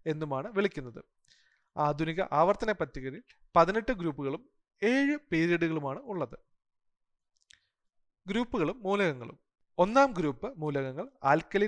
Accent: native